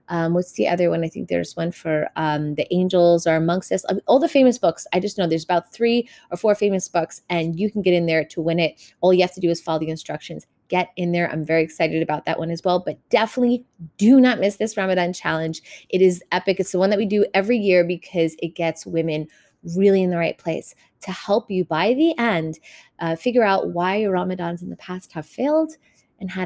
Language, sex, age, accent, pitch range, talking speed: English, female, 30-49, American, 165-200 Hz, 240 wpm